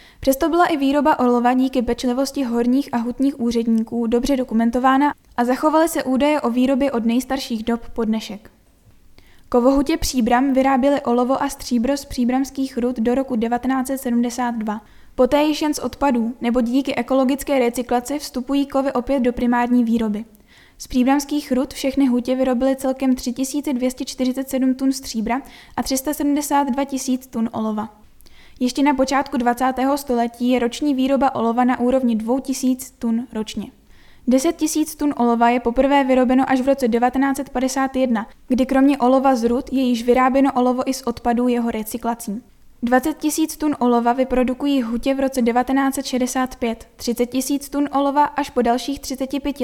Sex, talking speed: female, 145 wpm